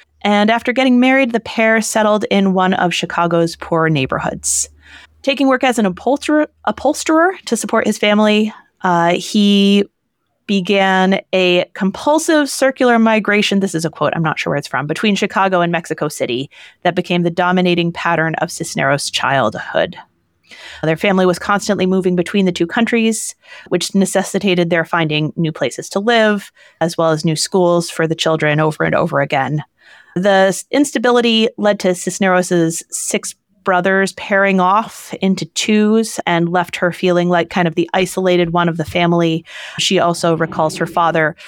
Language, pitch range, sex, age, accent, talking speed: English, 170-210 Hz, female, 30-49, American, 160 wpm